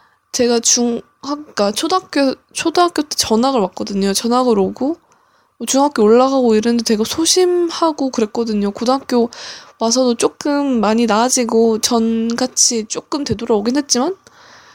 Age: 20-39